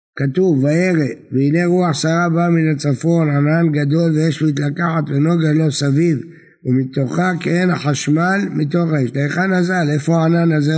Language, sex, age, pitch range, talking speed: Hebrew, male, 60-79, 145-165 Hz, 140 wpm